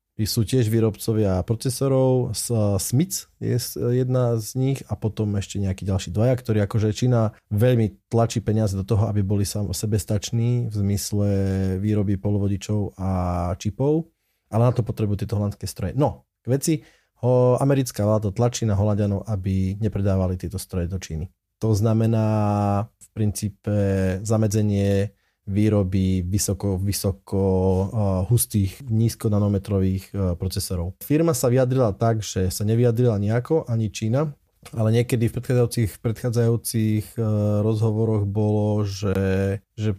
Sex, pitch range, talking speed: male, 100-115 Hz, 130 wpm